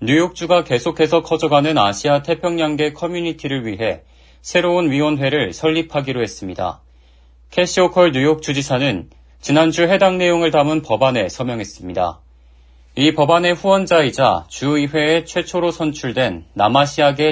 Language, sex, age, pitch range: Korean, male, 40-59, 105-165 Hz